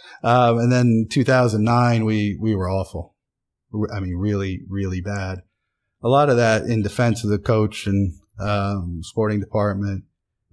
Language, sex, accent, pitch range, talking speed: English, male, American, 95-110 Hz, 155 wpm